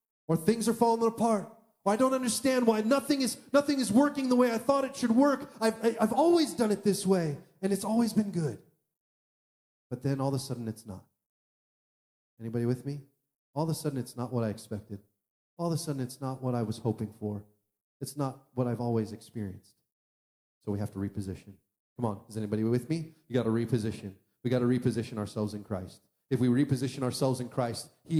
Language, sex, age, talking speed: English, male, 30-49, 215 wpm